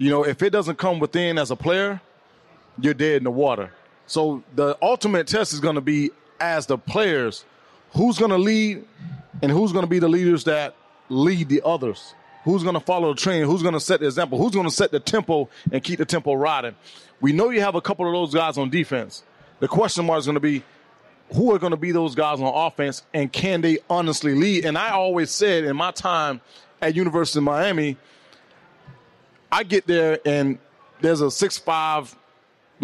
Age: 30-49